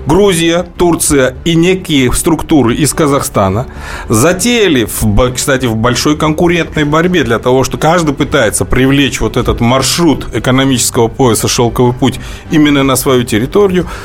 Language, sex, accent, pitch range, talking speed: Russian, male, native, 130-190 Hz, 130 wpm